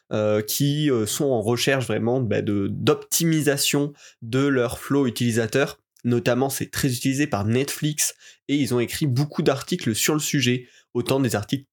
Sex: male